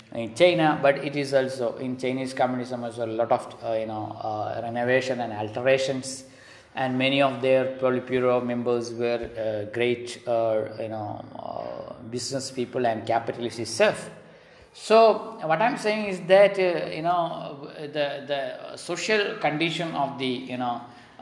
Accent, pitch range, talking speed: native, 120-150 Hz, 160 wpm